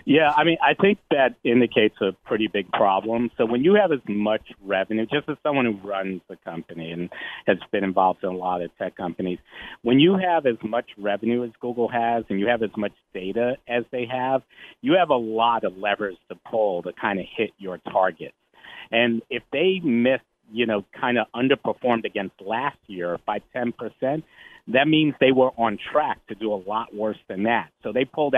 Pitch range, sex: 105-125 Hz, male